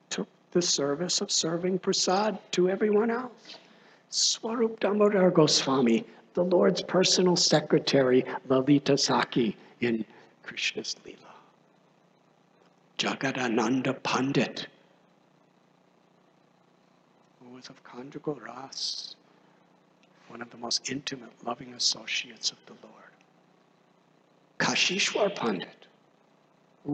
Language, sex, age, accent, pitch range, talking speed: English, male, 60-79, American, 135-180 Hz, 90 wpm